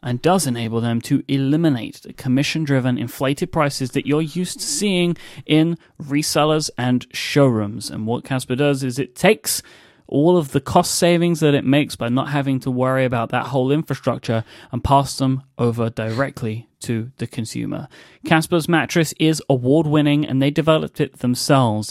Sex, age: male, 30-49